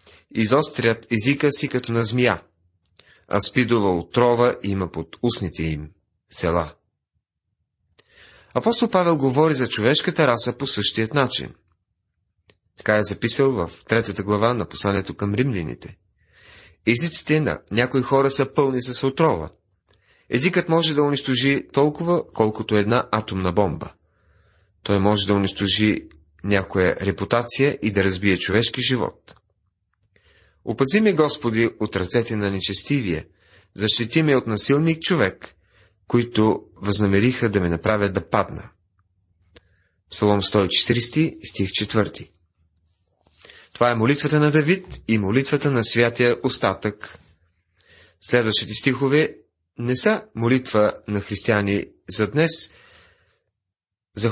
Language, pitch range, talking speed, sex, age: Bulgarian, 95-125 Hz, 115 wpm, male, 30-49